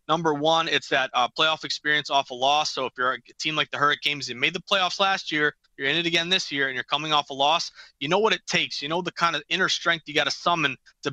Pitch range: 140-165 Hz